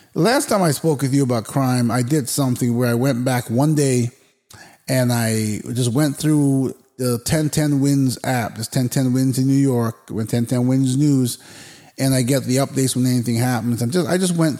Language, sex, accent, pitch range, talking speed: English, male, American, 115-150 Hz, 195 wpm